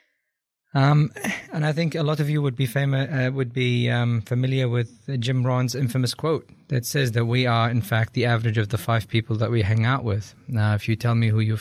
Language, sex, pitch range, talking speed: Arabic, male, 110-130 Hz, 240 wpm